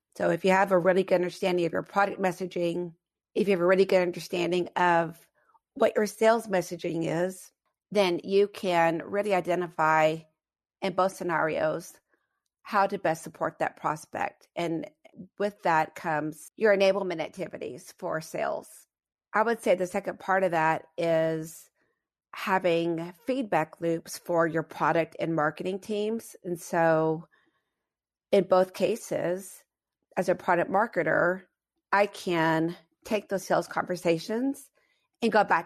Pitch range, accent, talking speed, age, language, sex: 160-195 Hz, American, 140 wpm, 40-59, English, female